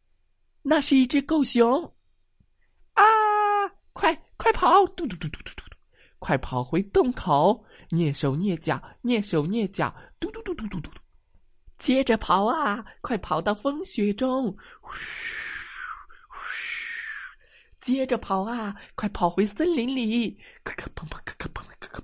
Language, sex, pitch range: Chinese, male, 170-270 Hz